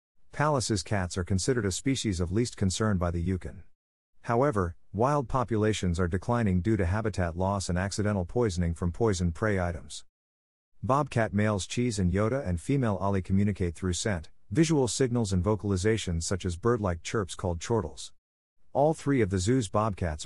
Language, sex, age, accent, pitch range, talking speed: English, male, 50-69, American, 90-110 Hz, 165 wpm